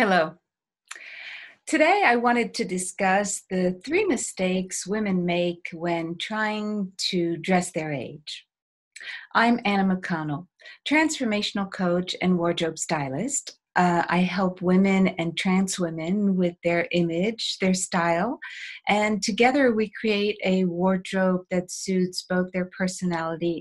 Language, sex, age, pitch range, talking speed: English, female, 50-69, 170-210 Hz, 120 wpm